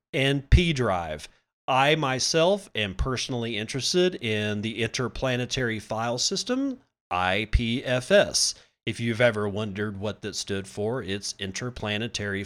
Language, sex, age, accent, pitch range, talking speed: English, male, 40-59, American, 105-140 Hz, 115 wpm